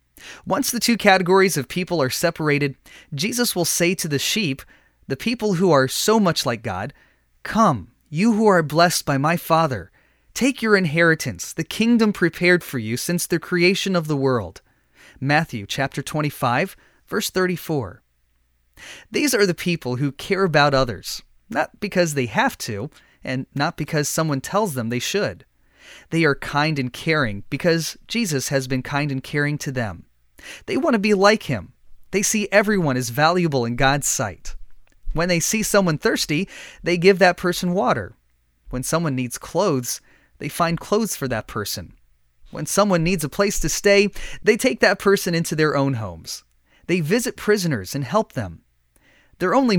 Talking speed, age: 170 wpm, 30-49